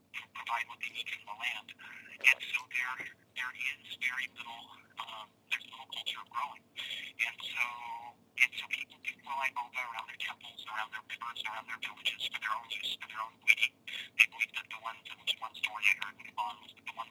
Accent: American